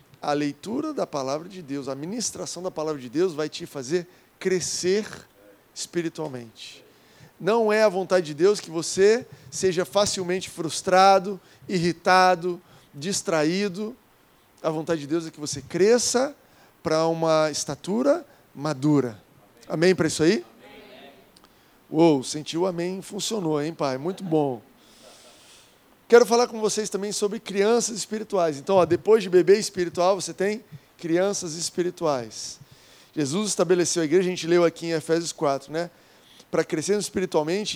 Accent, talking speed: Brazilian, 140 wpm